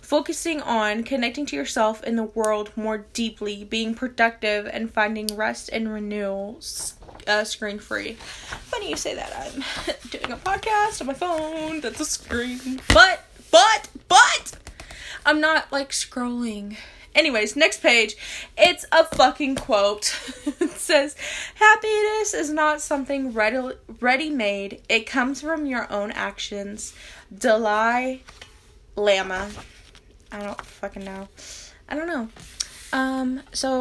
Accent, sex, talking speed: American, female, 130 wpm